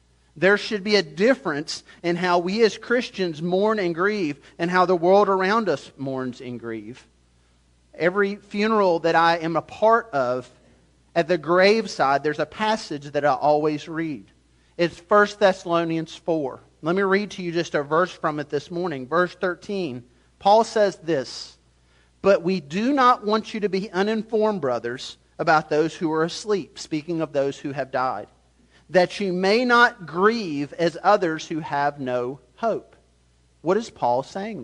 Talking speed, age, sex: 170 wpm, 40-59, male